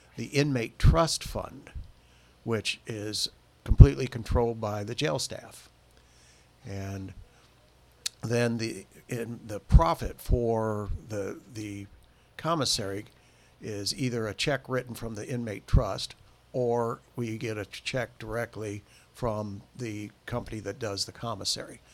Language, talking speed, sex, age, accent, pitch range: English, 120 wpm, male, 60-79, American, 100-125 Hz